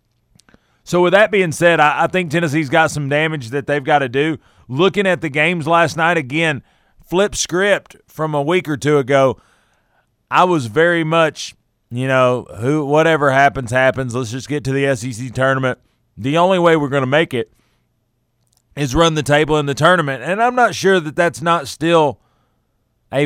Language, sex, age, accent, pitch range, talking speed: English, male, 30-49, American, 130-165 Hz, 185 wpm